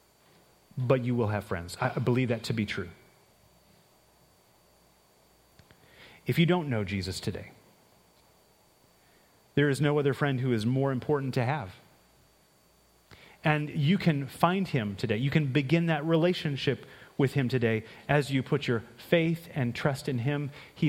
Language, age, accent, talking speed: English, 30-49, American, 150 wpm